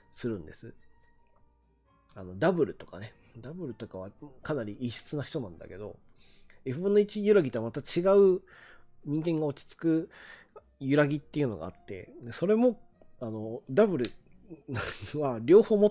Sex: male